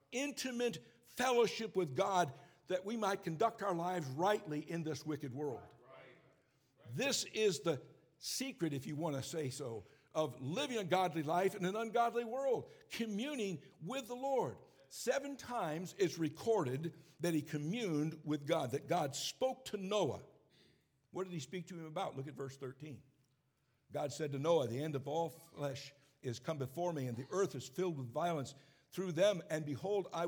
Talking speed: 175 wpm